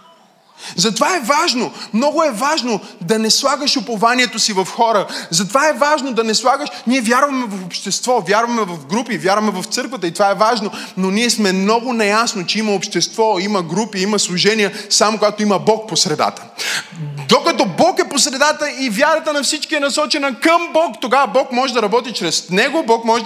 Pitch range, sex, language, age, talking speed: 205-280 Hz, male, Bulgarian, 20-39, 185 wpm